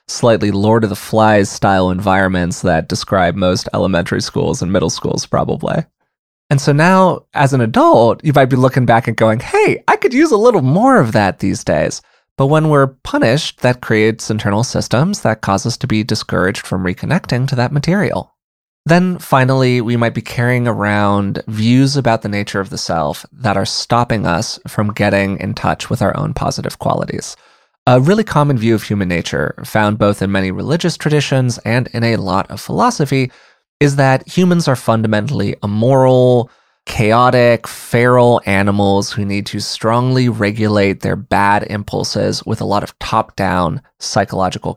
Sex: male